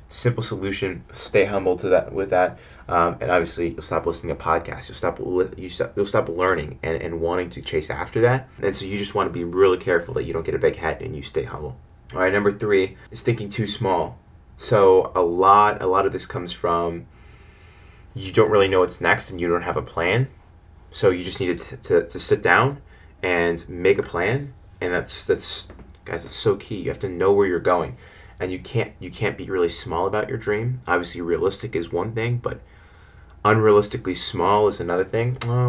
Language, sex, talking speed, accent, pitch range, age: English, male, 215 wpm, American, 85-120 Hz, 20-39